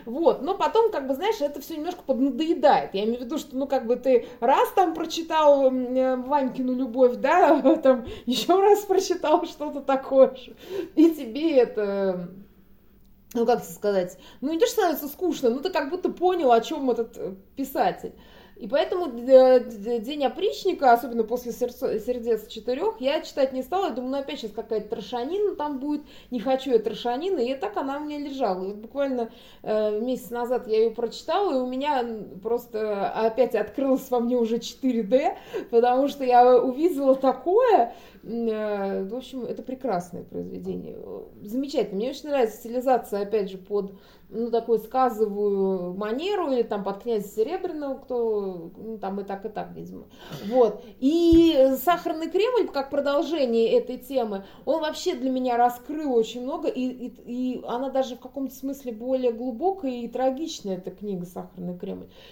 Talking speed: 160 wpm